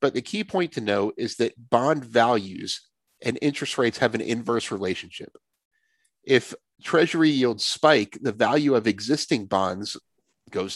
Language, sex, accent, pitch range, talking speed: English, male, American, 105-145 Hz, 150 wpm